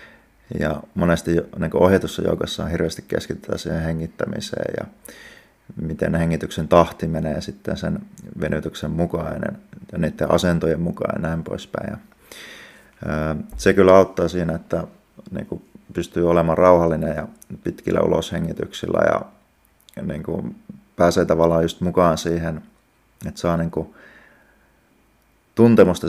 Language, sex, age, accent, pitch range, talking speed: Finnish, male, 30-49, native, 80-90 Hz, 115 wpm